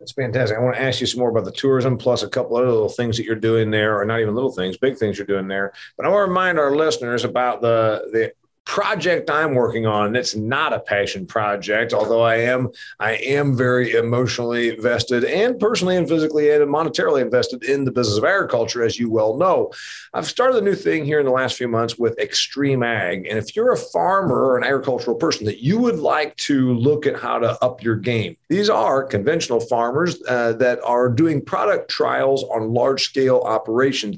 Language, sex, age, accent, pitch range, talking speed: English, male, 40-59, American, 115-155 Hz, 220 wpm